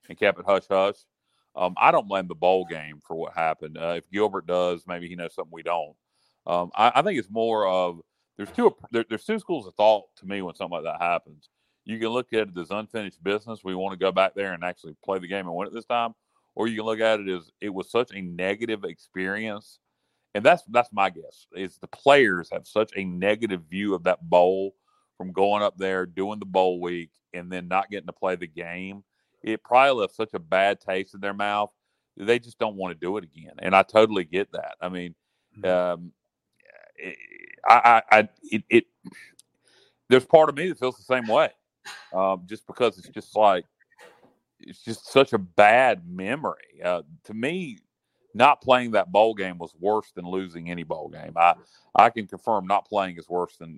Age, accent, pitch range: 40-59, American, 90-105 Hz